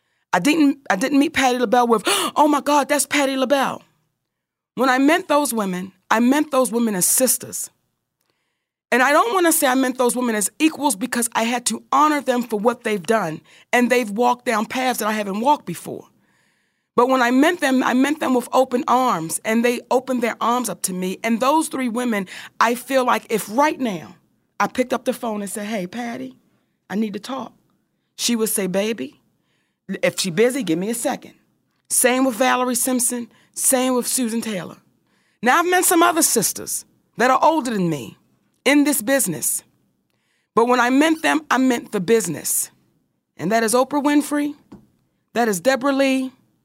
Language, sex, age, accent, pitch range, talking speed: English, female, 40-59, American, 225-275 Hz, 195 wpm